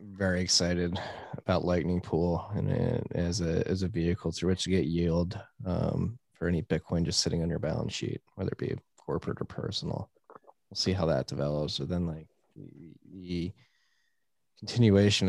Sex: male